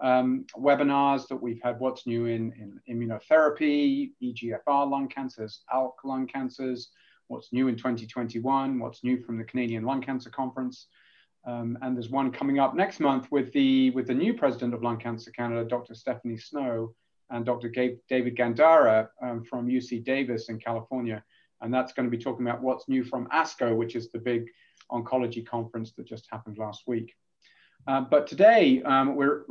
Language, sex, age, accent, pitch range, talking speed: English, male, 30-49, British, 120-135 Hz, 175 wpm